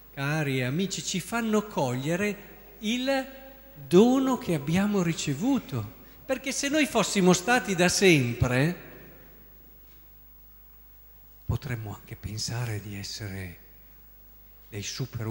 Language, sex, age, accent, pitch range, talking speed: Italian, male, 50-69, native, 140-210 Hz, 95 wpm